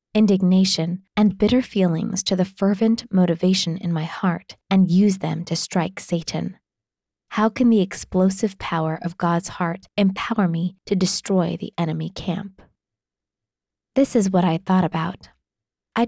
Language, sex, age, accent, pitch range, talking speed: English, female, 20-39, American, 170-200 Hz, 145 wpm